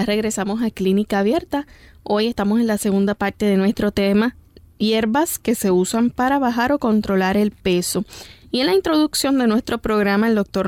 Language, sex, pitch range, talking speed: Spanish, female, 195-235 Hz, 180 wpm